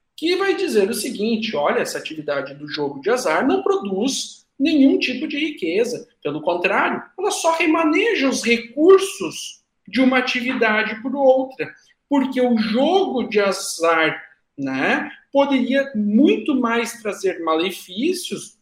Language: Portuguese